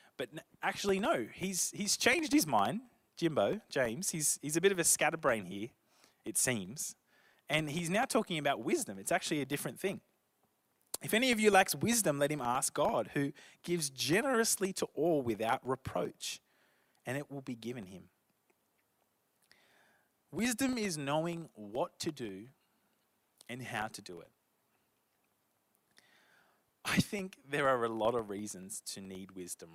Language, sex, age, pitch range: English, male, 20-39, 125-190 Hz